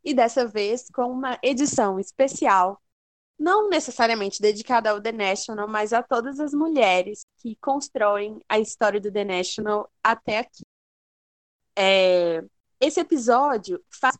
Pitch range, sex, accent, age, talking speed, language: 220-275 Hz, female, Brazilian, 20-39, 125 wpm, English